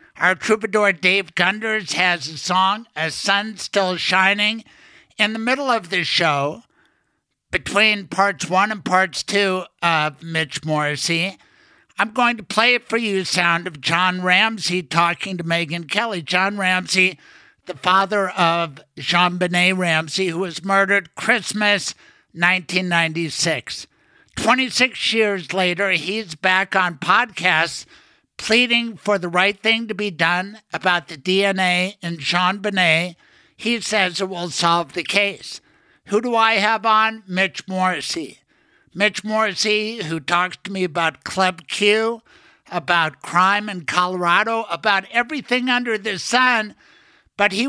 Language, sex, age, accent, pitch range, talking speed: English, male, 60-79, American, 170-215 Hz, 135 wpm